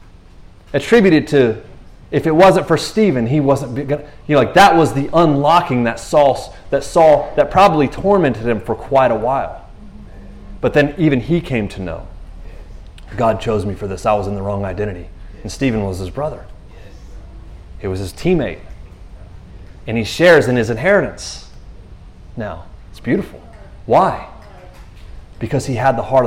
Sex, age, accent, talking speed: male, 30-49, American, 160 wpm